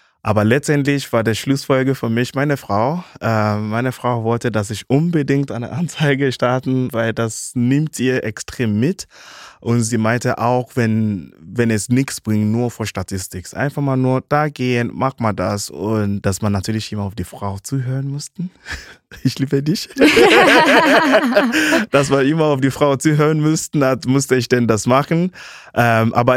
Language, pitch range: German, 110-145 Hz